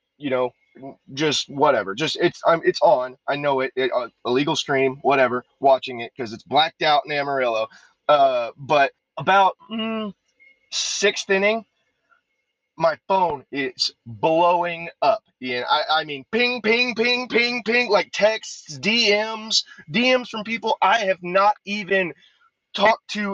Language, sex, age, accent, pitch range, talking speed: English, male, 30-49, American, 155-220 Hz, 150 wpm